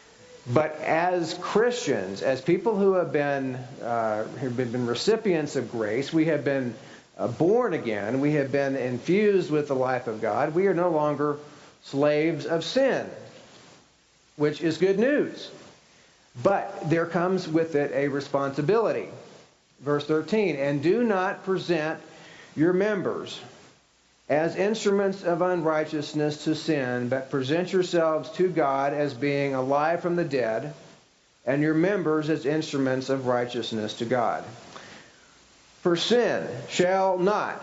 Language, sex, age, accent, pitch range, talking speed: English, male, 50-69, American, 140-180 Hz, 135 wpm